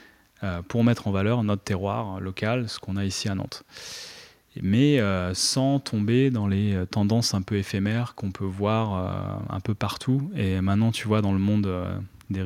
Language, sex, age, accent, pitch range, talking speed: French, male, 20-39, French, 100-115 Hz, 190 wpm